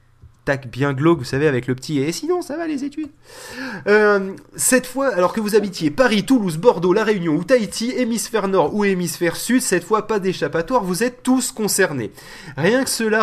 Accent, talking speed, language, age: French, 210 wpm, French, 20-39